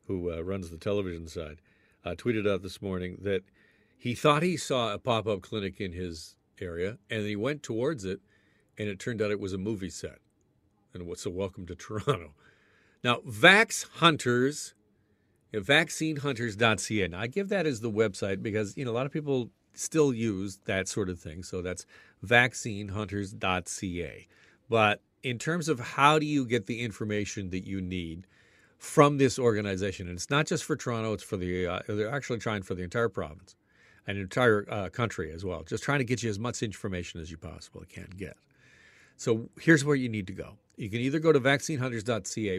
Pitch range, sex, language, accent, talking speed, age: 100-130 Hz, male, English, American, 195 wpm, 50-69